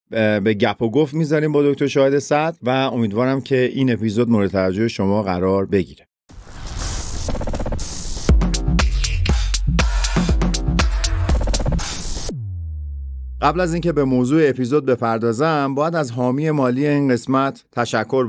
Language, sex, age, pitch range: Persian, male, 50-69, 110-135 Hz